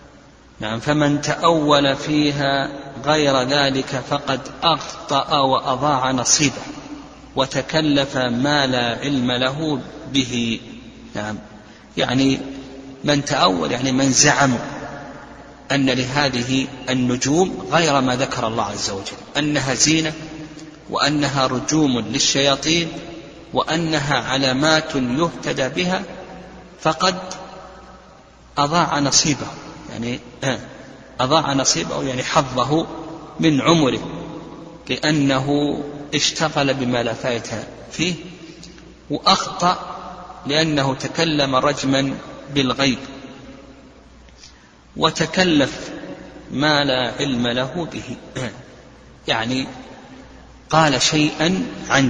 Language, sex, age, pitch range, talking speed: Arabic, male, 50-69, 130-155 Hz, 80 wpm